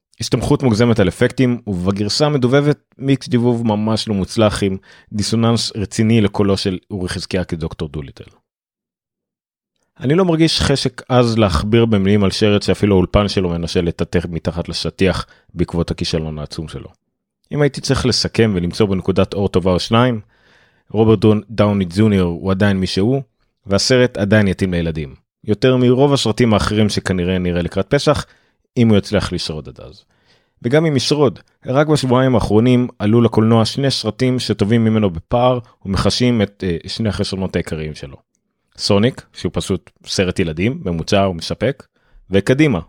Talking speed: 140 wpm